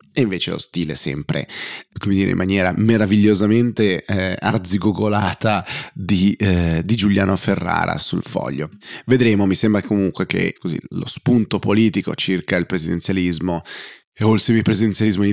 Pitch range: 90-105 Hz